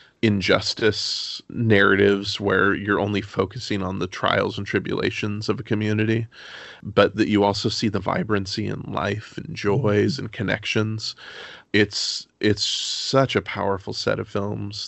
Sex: male